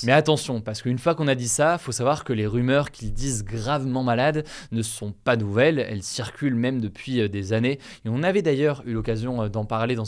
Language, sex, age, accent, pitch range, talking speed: French, male, 20-39, French, 115-145 Hz, 220 wpm